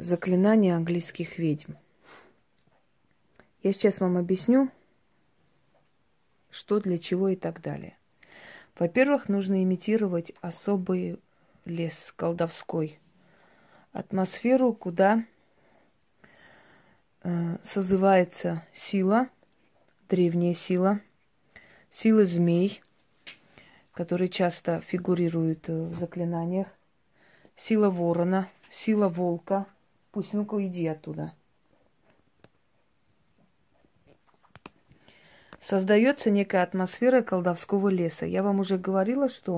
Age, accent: 20-39, native